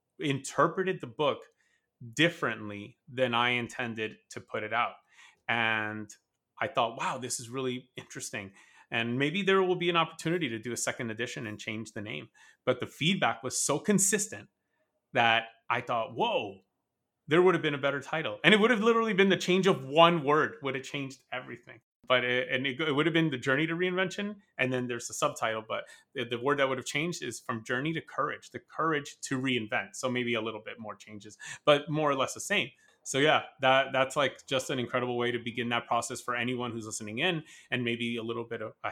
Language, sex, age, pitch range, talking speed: English, male, 30-49, 120-155 Hz, 210 wpm